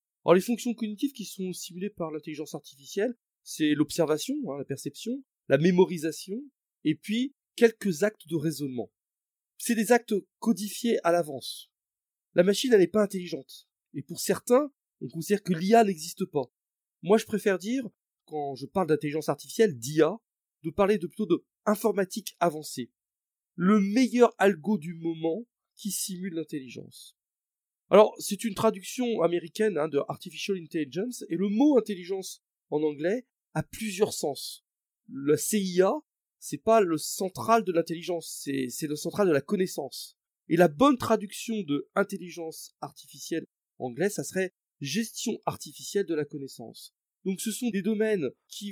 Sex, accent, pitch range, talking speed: male, French, 155-215 Hz, 155 wpm